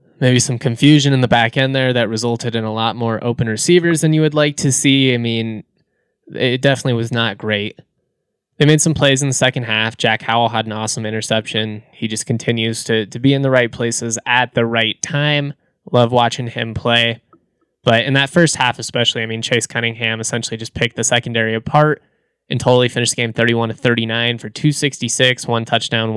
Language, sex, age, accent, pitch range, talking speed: English, male, 20-39, American, 115-130 Hz, 200 wpm